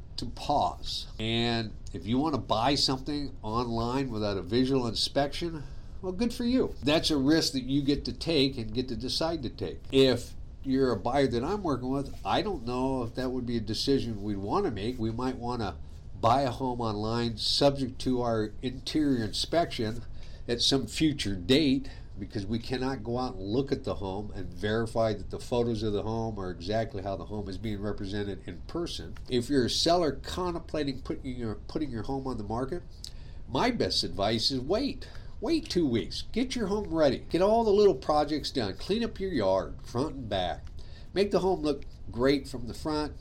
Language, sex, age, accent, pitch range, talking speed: English, male, 50-69, American, 110-140 Hz, 200 wpm